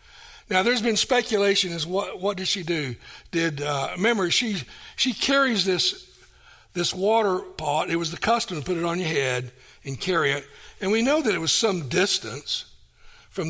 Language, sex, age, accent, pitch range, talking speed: English, male, 60-79, American, 145-210 Hz, 185 wpm